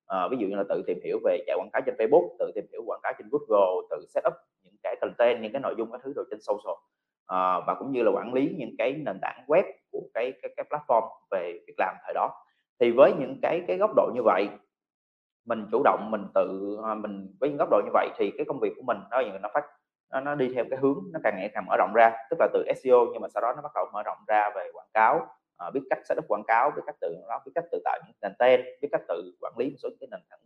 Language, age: Vietnamese, 20-39